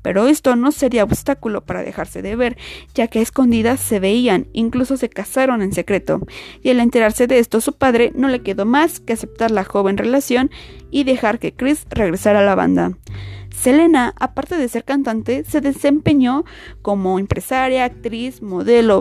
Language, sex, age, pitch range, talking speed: Spanish, female, 20-39, 210-275 Hz, 175 wpm